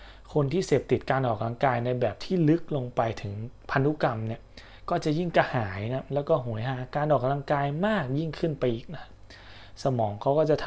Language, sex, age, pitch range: Thai, male, 20-39, 110-145 Hz